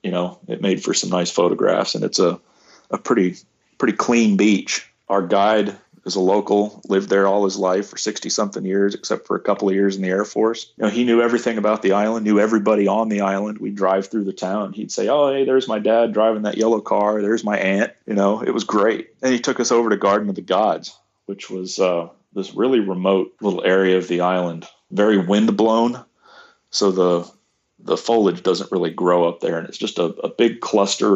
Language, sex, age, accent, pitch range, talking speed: English, male, 30-49, American, 90-105 Hz, 225 wpm